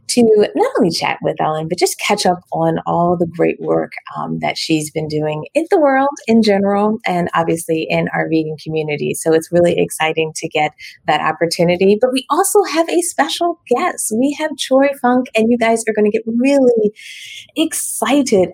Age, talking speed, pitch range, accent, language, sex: 30-49, 190 wpm, 160-235 Hz, American, English, female